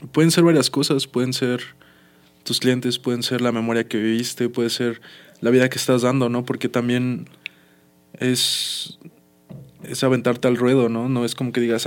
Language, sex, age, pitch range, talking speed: Spanish, male, 20-39, 115-125 Hz, 175 wpm